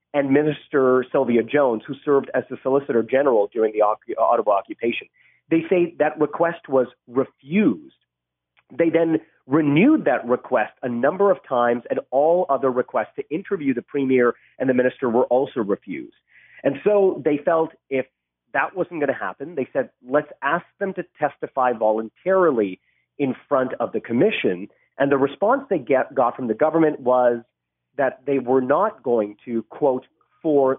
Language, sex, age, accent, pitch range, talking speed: English, male, 40-59, American, 120-155 Hz, 160 wpm